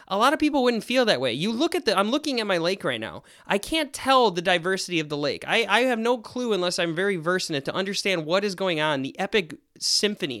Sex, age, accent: male, 20-39, American